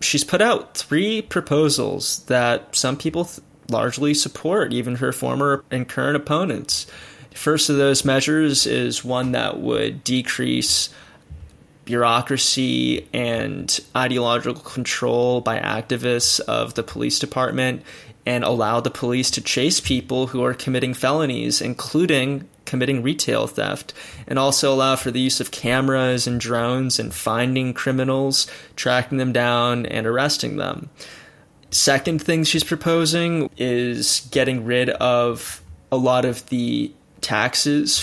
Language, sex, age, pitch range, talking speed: English, male, 20-39, 120-140 Hz, 130 wpm